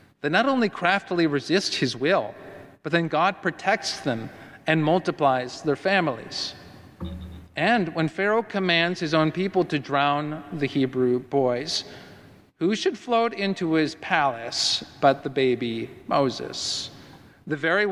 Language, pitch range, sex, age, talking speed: English, 135-180 Hz, male, 40-59, 135 wpm